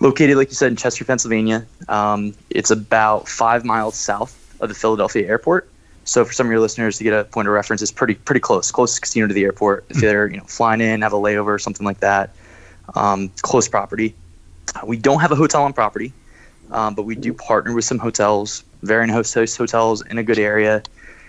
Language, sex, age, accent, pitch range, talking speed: English, male, 20-39, American, 105-115 Hz, 215 wpm